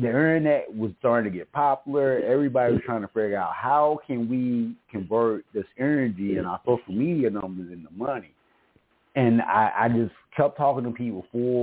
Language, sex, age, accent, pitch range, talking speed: English, male, 30-49, American, 105-130 Hz, 180 wpm